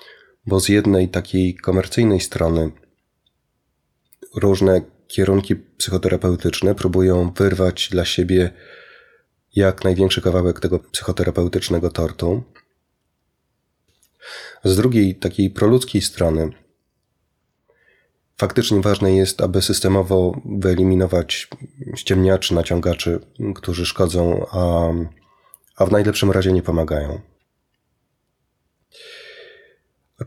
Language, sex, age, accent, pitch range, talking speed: Polish, male, 30-49, native, 85-100 Hz, 85 wpm